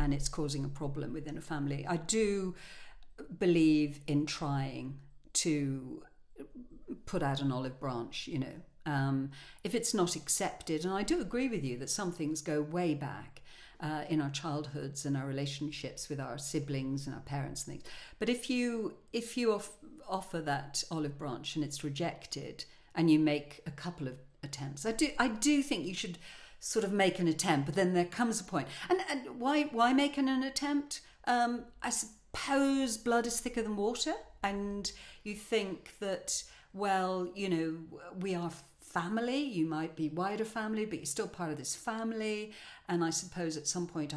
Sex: female